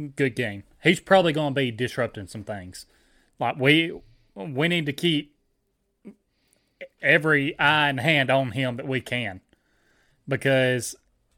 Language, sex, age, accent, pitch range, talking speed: English, male, 30-49, American, 125-150 Hz, 135 wpm